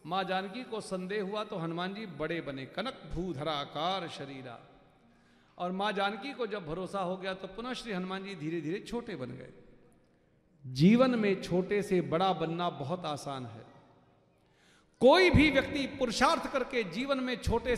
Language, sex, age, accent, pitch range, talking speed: Hindi, male, 50-69, native, 165-230 Hz, 165 wpm